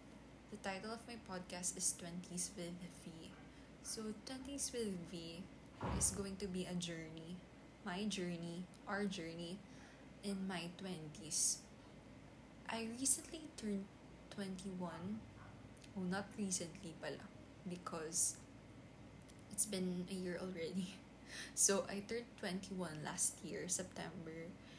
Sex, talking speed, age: female, 115 wpm, 20-39